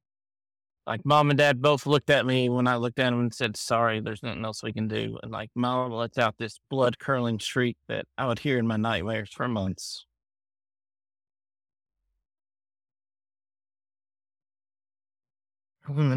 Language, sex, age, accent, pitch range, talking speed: English, male, 30-49, American, 110-150 Hz, 150 wpm